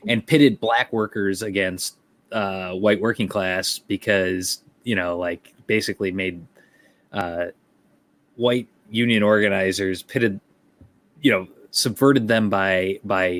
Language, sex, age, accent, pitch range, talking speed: English, male, 20-39, American, 90-105 Hz, 115 wpm